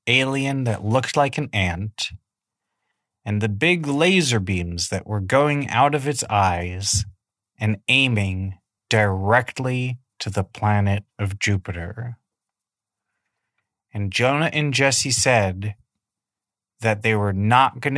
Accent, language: American, English